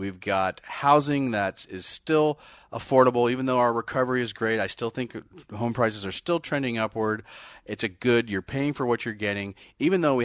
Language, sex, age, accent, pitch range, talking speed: English, male, 30-49, American, 100-135 Hz, 200 wpm